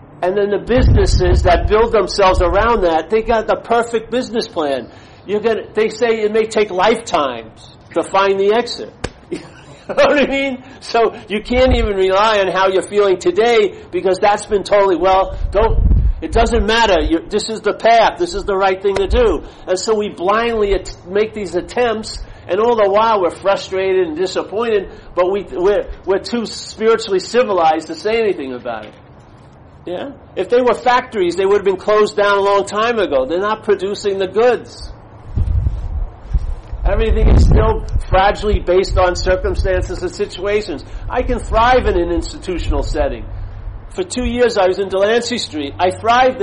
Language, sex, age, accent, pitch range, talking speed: English, male, 50-69, American, 180-230 Hz, 175 wpm